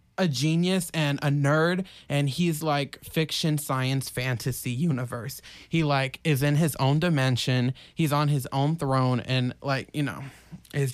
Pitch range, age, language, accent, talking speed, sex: 135-175 Hz, 20-39, English, American, 160 wpm, male